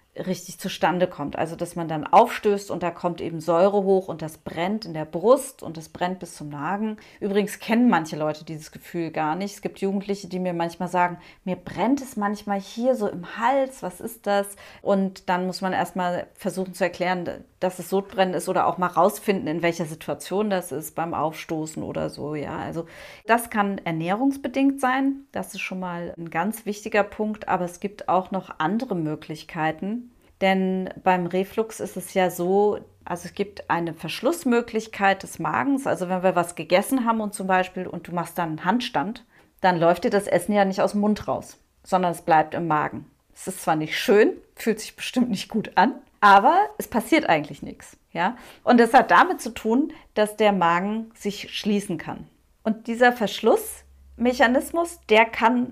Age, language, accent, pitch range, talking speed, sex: 30-49, German, German, 175-215 Hz, 190 wpm, female